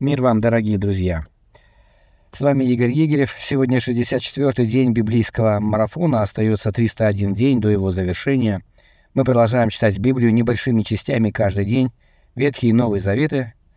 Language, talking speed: Russian, 135 wpm